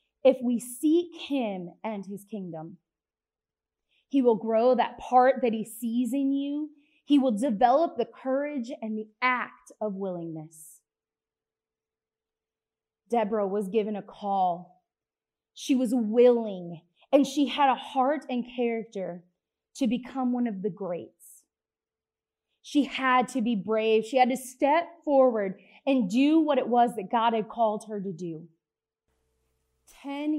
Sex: female